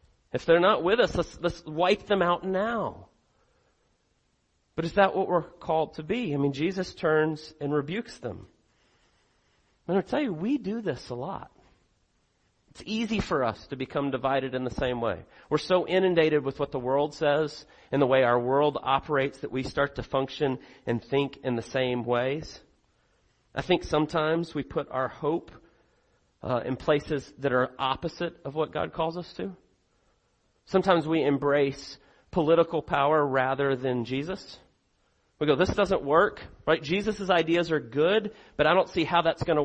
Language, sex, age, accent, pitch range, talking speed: English, male, 40-59, American, 135-175 Hz, 175 wpm